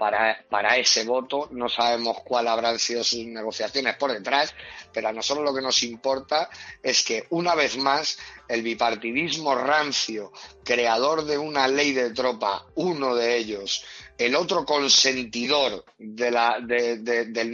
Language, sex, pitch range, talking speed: Spanish, male, 120-150 Hz, 140 wpm